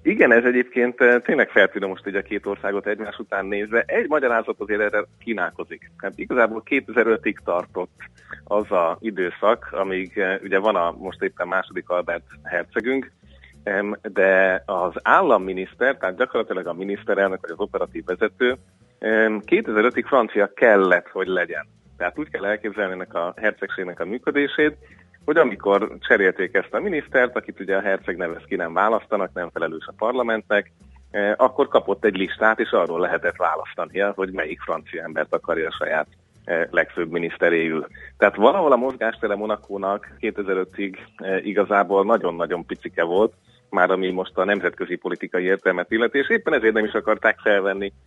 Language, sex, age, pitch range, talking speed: Hungarian, male, 30-49, 95-110 Hz, 150 wpm